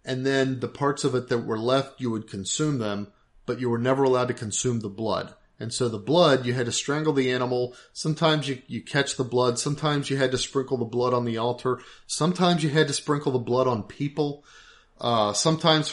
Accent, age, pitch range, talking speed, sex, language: American, 30-49, 115-135 Hz, 220 wpm, male, English